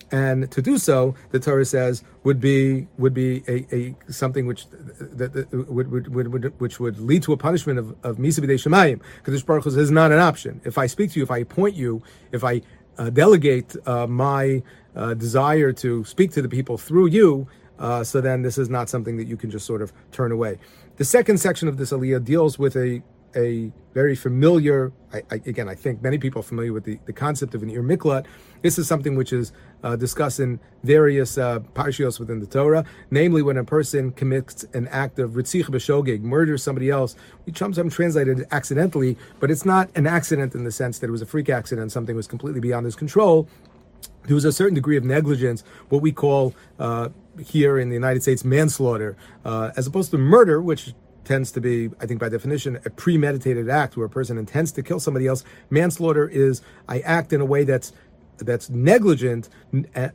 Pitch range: 120-150 Hz